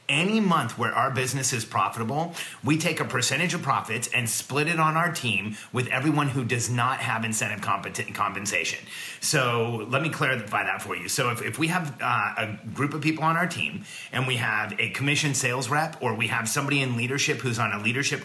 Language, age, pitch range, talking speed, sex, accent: English, 30-49, 115-145 Hz, 210 wpm, male, American